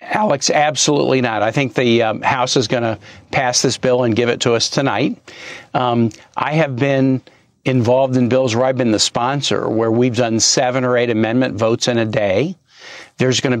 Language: English